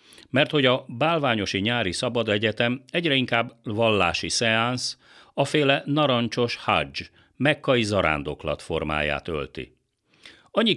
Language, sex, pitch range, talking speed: Hungarian, male, 90-140 Hz, 110 wpm